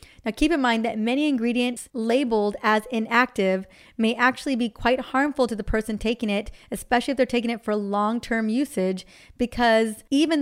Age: 30-49